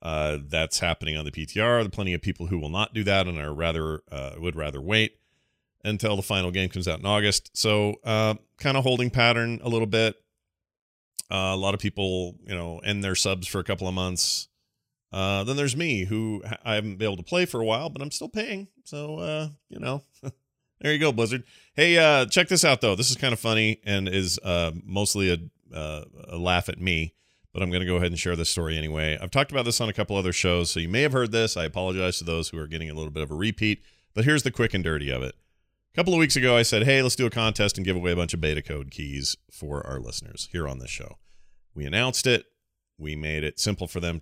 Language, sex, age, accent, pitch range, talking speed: English, male, 30-49, American, 85-115 Hz, 255 wpm